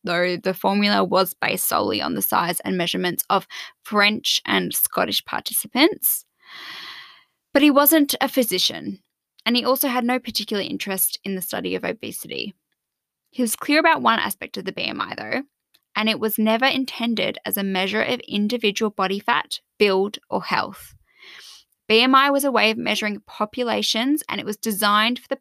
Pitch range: 205-260 Hz